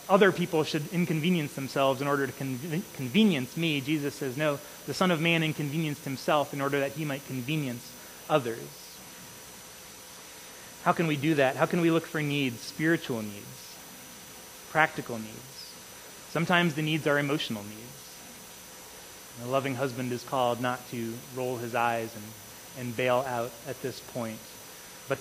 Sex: male